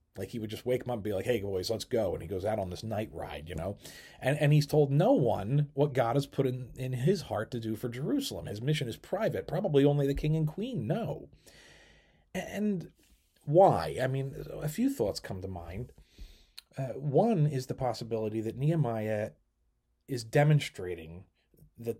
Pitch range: 105-150 Hz